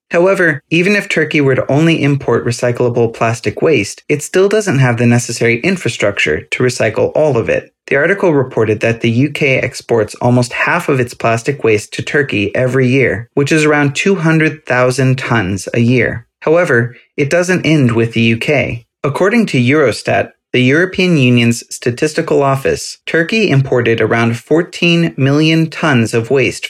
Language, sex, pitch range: English, male, 120-160 Hz